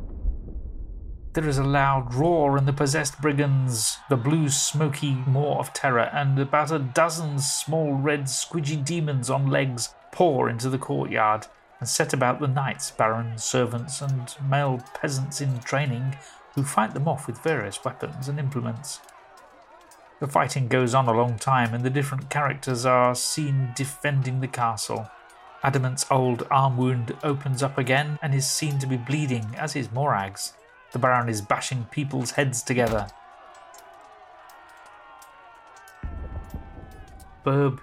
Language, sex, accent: English, male, British